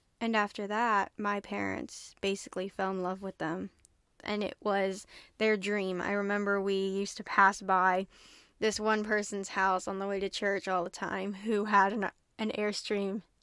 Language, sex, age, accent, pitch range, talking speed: English, female, 10-29, American, 190-215 Hz, 180 wpm